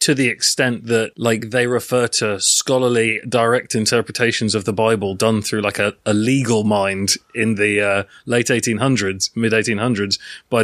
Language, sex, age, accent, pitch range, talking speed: English, male, 30-49, British, 110-130 Hz, 165 wpm